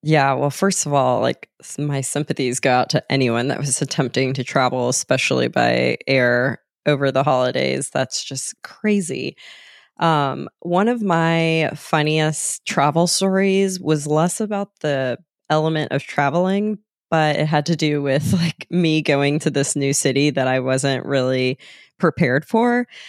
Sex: female